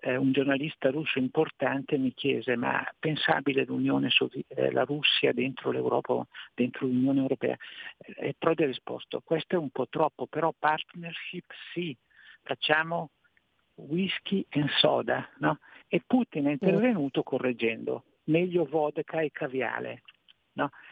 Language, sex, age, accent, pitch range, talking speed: Italian, male, 60-79, native, 130-165 Hz, 125 wpm